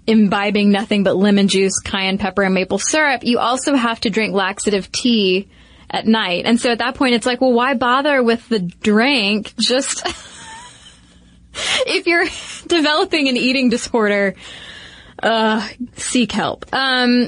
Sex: female